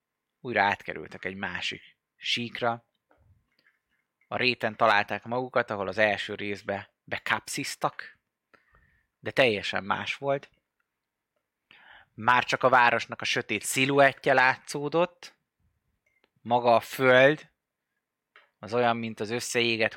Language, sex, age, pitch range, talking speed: Hungarian, male, 20-39, 105-125 Hz, 100 wpm